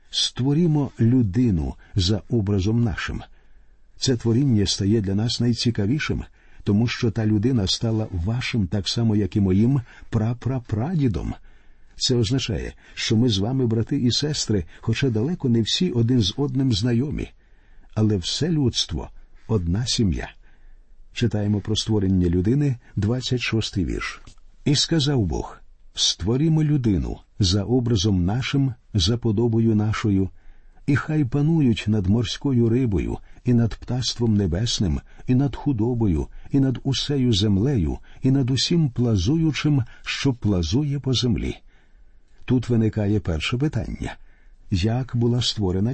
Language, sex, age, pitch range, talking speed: Ukrainian, male, 50-69, 100-130 Hz, 125 wpm